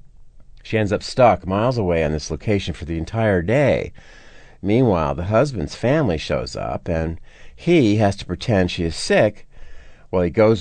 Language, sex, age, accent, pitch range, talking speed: English, male, 50-69, American, 80-110 Hz, 170 wpm